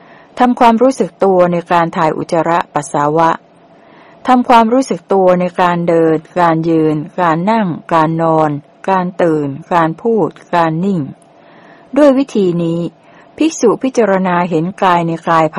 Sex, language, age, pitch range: female, Thai, 60-79, 160-205 Hz